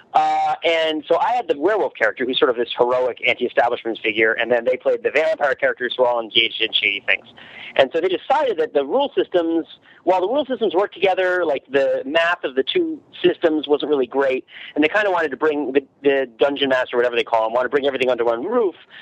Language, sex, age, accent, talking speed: English, male, 40-59, American, 235 wpm